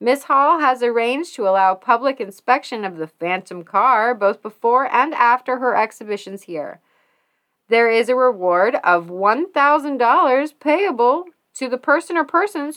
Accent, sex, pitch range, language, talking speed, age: American, female, 200-270 Hz, English, 145 wpm, 30-49